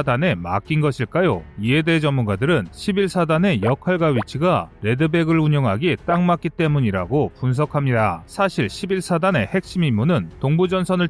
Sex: male